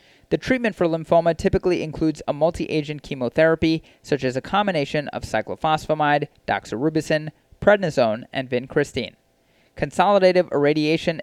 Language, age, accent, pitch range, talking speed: English, 30-49, American, 135-180 Hz, 120 wpm